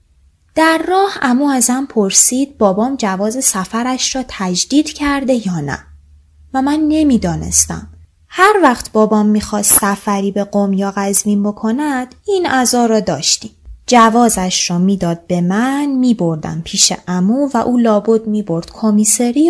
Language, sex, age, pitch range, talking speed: Persian, female, 20-39, 180-270 Hz, 135 wpm